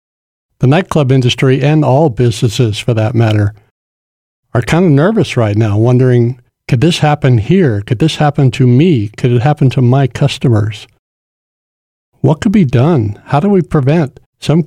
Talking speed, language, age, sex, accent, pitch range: 165 wpm, English, 60-79, male, American, 120-145 Hz